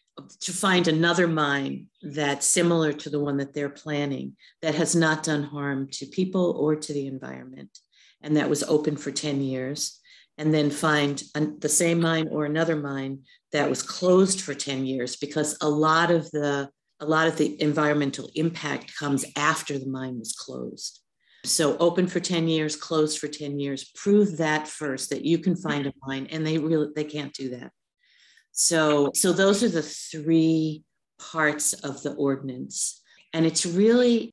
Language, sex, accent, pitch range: English, female, American, 145-165 Hz